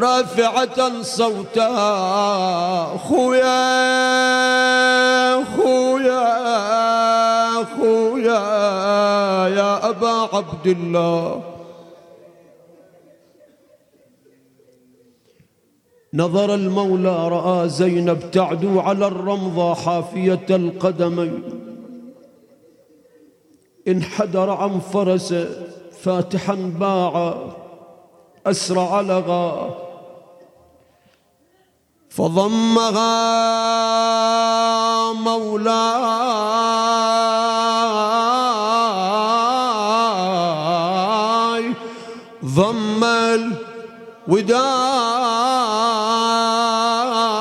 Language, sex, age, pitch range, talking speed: Arabic, male, 40-59, 185-230 Hz, 40 wpm